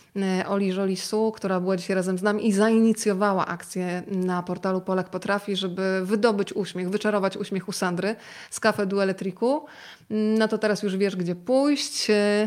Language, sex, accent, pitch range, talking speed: Polish, female, native, 195-225 Hz, 160 wpm